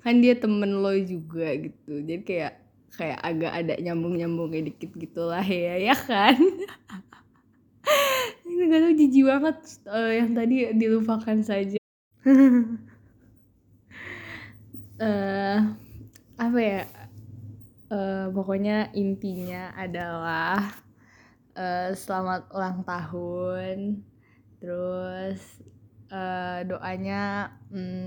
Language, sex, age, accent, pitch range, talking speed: English, female, 10-29, Indonesian, 175-200 Hz, 95 wpm